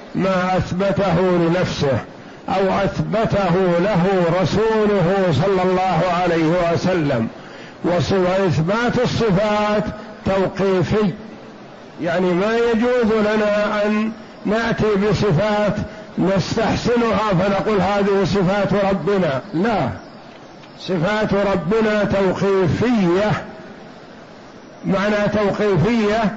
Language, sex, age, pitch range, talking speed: Arabic, male, 60-79, 185-215 Hz, 75 wpm